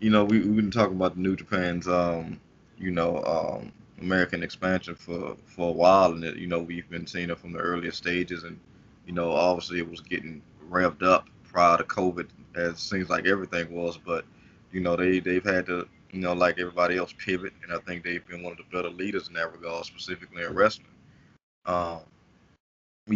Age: 20-39